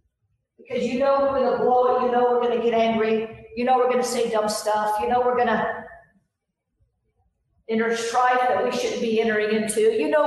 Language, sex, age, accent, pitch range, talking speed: English, female, 40-59, American, 235-280 Hz, 220 wpm